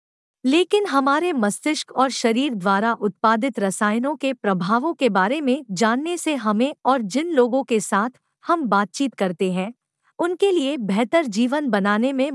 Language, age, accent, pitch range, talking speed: Hindi, 50-69, native, 215-295 Hz, 150 wpm